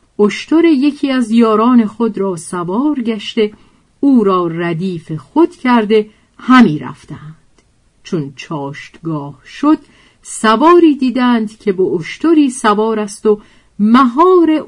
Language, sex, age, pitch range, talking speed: Persian, female, 50-69, 175-260 Hz, 110 wpm